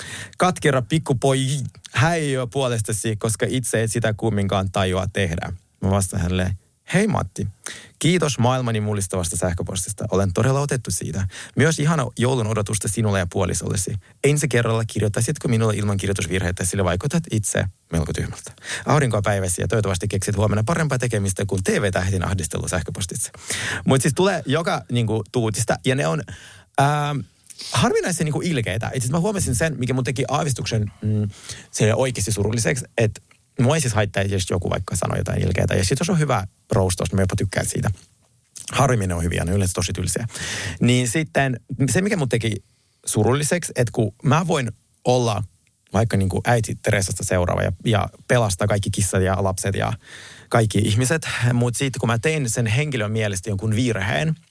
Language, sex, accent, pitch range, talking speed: Finnish, male, native, 100-130 Hz, 160 wpm